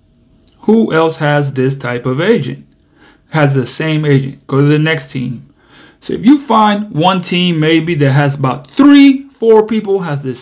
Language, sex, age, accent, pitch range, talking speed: English, male, 30-49, American, 135-170 Hz, 180 wpm